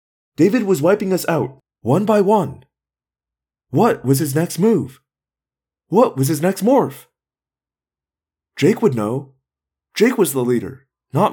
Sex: male